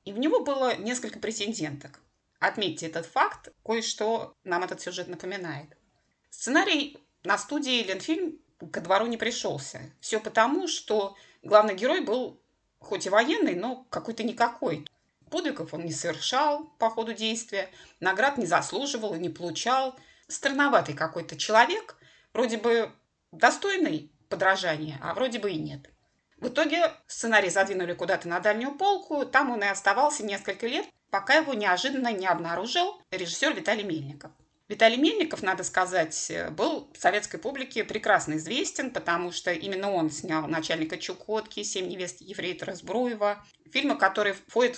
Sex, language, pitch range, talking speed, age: female, Russian, 175-260 Hz, 140 wpm, 20-39